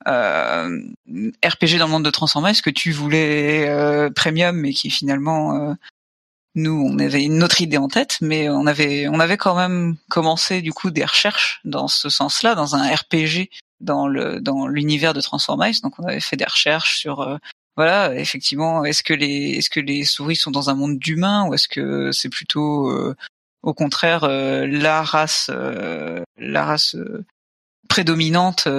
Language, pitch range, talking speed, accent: French, 145-165 Hz, 180 wpm, French